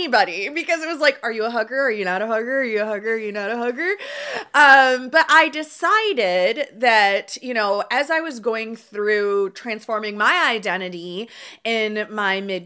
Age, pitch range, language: 20-39, 215-295 Hz, English